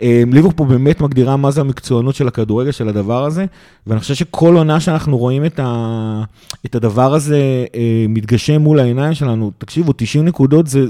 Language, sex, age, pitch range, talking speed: Hebrew, male, 30-49, 115-140 Hz, 155 wpm